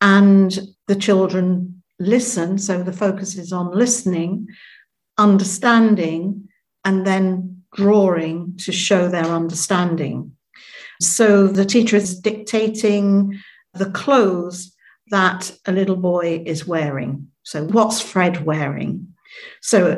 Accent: British